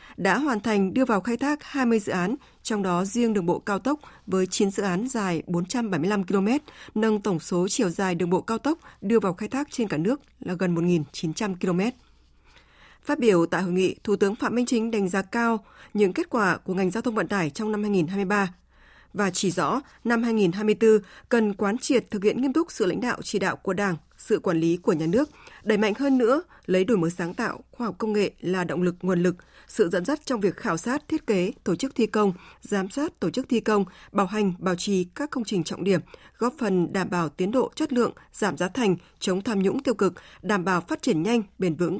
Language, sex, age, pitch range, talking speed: Vietnamese, female, 20-39, 185-235 Hz, 235 wpm